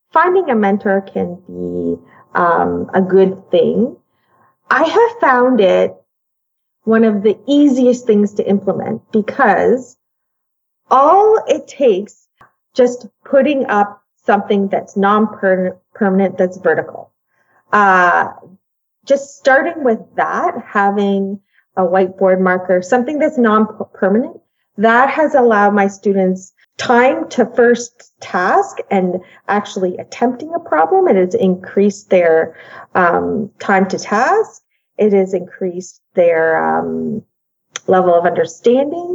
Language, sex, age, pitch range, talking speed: English, female, 30-49, 190-265 Hz, 115 wpm